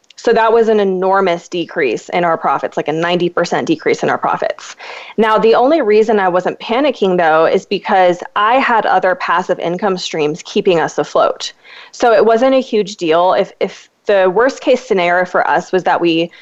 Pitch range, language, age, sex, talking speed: 175-220 Hz, English, 20-39, female, 190 wpm